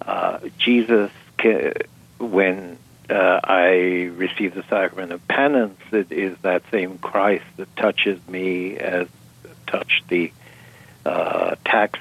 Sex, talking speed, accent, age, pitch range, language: male, 115 wpm, American, 60-79, 90-105 Hz, English